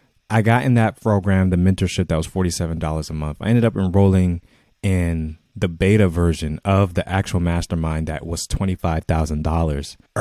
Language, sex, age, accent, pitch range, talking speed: English, male, 20-39, American, 80-105 Hz, 160 wpm